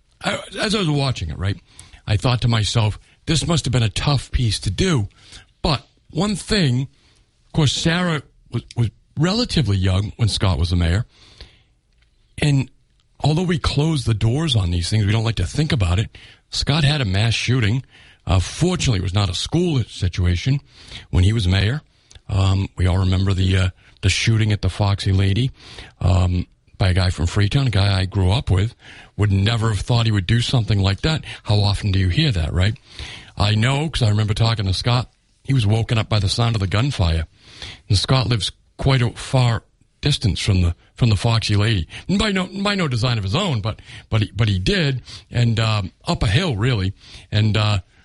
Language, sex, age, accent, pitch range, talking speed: English, male, 50-69, American, 95-130 Hz, 205 wpm